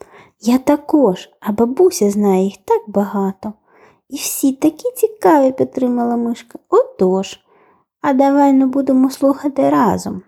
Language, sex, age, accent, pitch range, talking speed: Ukrainian, female, 20-39, native, 195-285 Hz, 135 wpm